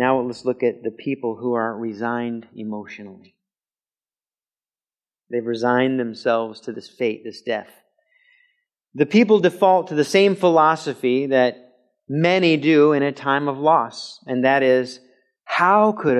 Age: 40-59